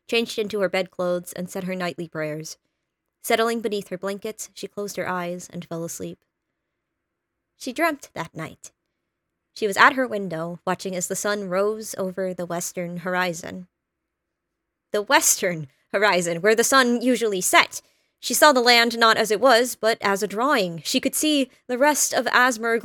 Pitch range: 190-240 Hz